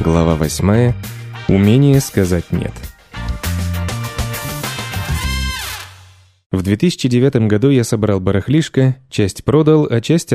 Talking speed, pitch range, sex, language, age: 85 wpm, 100-130 Hz, male, Russian, 20-39